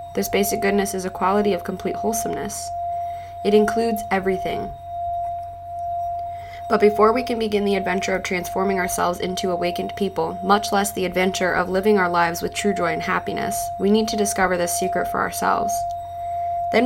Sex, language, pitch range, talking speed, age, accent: female, English, 175-235 Hz, 165 wpm, 20-39, American